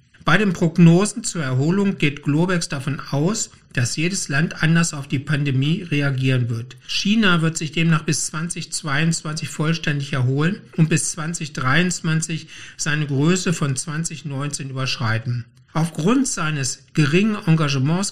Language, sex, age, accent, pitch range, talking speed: German, male, 60-79, German, 135-165 Hz, 125 wpm